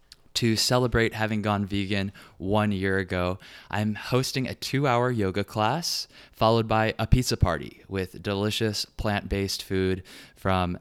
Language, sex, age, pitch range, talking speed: English, male, 20-39, 95-115 Hz, 135 wpm